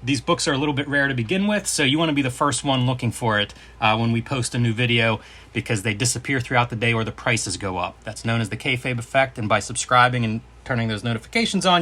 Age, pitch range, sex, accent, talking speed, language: 30-49, 115-145 Hz, male, American, 270 wpm, English